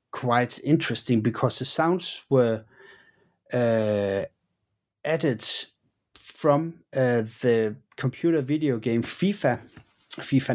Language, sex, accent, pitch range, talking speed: English, male, Danish, 115-145 Hz, 90 wpm